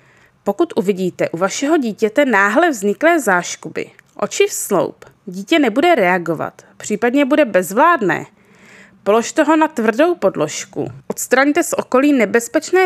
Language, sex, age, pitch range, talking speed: Czech, female, 20-39, 205-285 Hz, 120 wpm